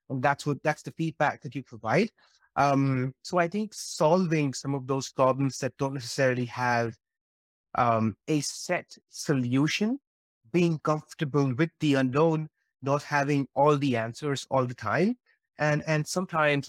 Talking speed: 150 wpm